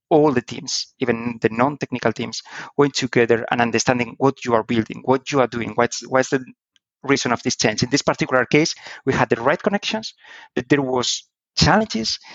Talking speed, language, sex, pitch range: 190 wpm, English, male, 115-145 Hz